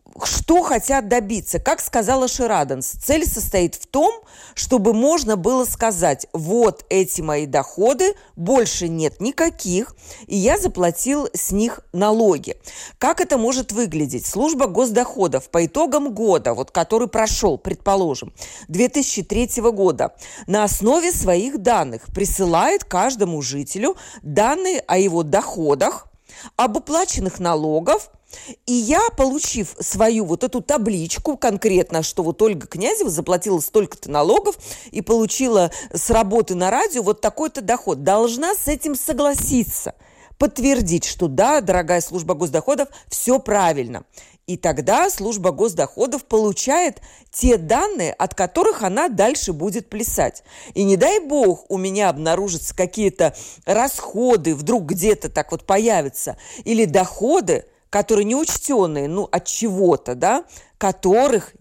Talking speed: 125 wpm